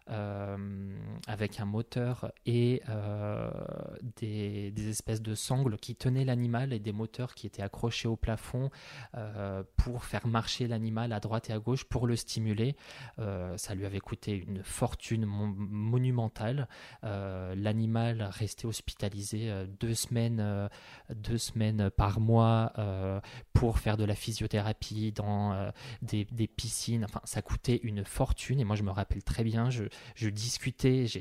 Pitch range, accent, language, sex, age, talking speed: 105-120 Hz, French, French, male, 20-39, 155 wpm